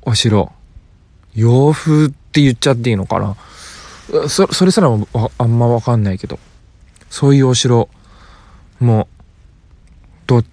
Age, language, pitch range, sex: 20-39, Japanese, 90-135 Hz, male